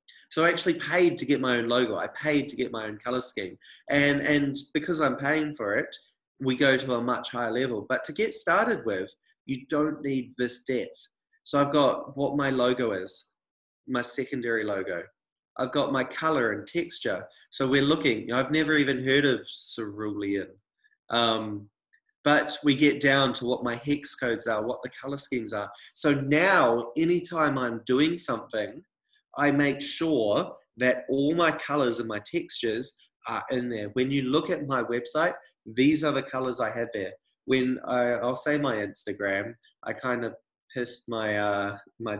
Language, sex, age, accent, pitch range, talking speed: English, male, 20-39, Australian, 120-150 Hz, 180 wpm